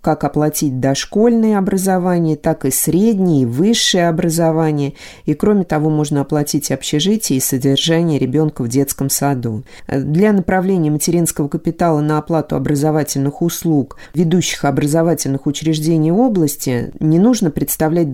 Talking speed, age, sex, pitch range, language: 120 wpm, 30-49, female, 140-165 Hz, Russian